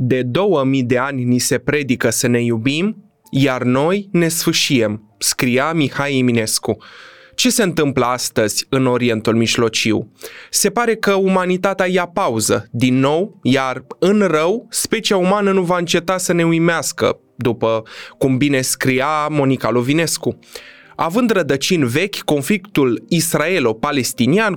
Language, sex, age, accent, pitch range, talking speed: Romanian, male, 20-39, native, 130-190 Hz, 130 wpm